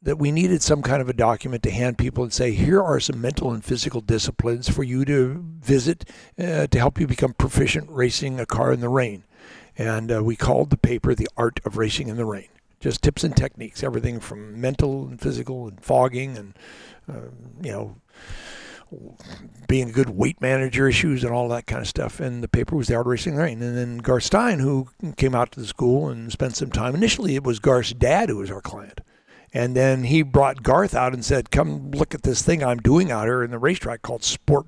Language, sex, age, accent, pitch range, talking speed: English, male, 60-79, American, 115-140 Hz, 230 wpm